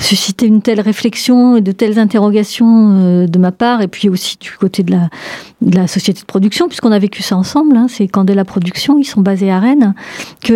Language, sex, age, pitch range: French, female, 50-69, 190-225 Hz